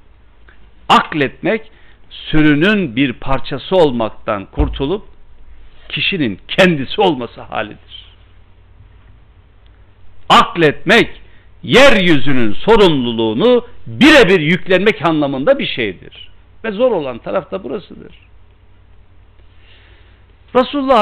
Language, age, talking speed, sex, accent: Turkish, 60-79, 70 wpm, male, native